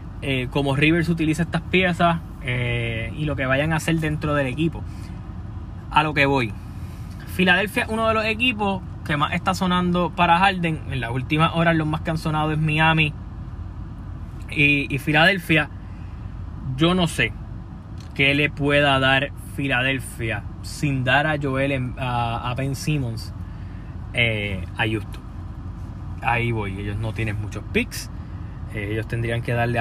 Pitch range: 105-150 Hz